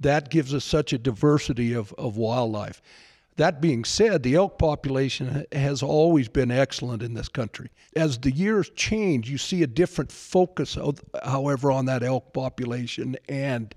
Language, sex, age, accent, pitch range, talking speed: English, male, 60-79, American, 130-155 Hz, 160 wpm